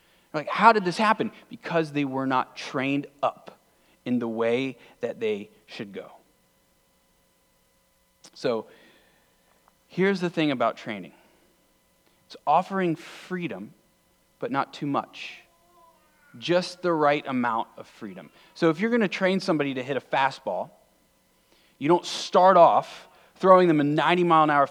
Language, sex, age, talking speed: English, male, 30-49, 145 wpm